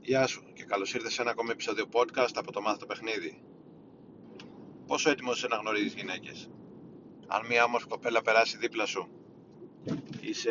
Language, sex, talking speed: Greek, male, 165 wpm